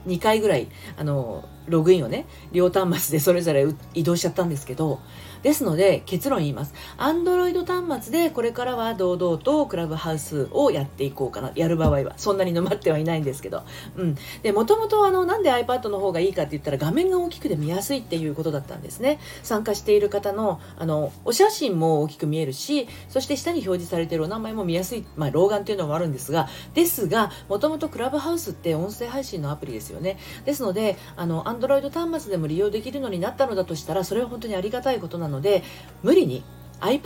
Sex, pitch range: female, 160-250 Hz